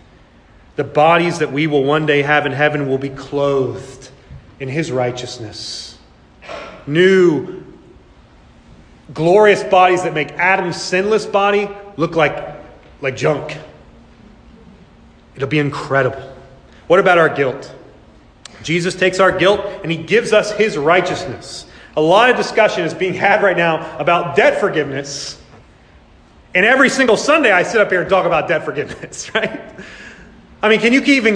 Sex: male